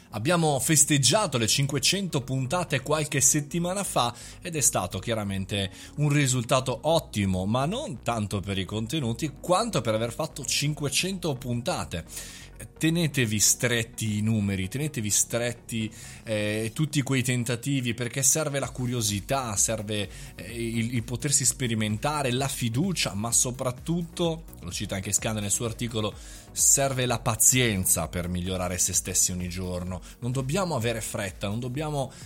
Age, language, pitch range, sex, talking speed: 20-39, Italian, 110-150 Hz, male, 135 wpm